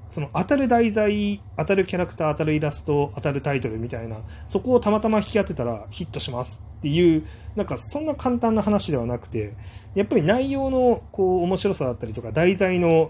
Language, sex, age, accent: Japanese, male, 30-49, native